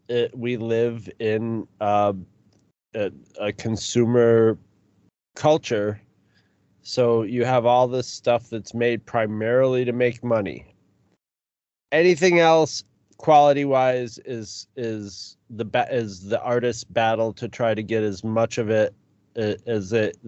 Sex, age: male, 30-49